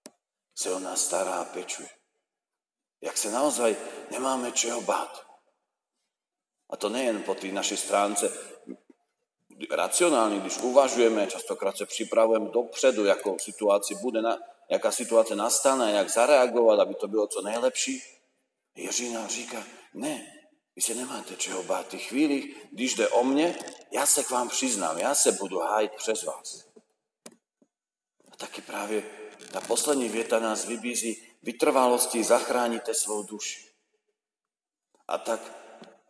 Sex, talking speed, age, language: male, 130 wpm, 40-59, Slovak